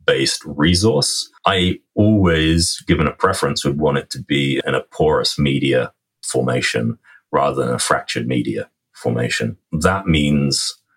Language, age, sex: English, 30-49, male